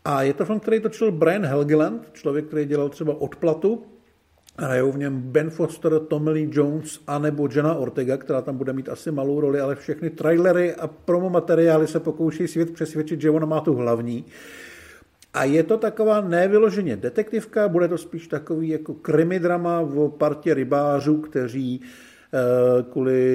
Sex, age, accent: male, 50-69, native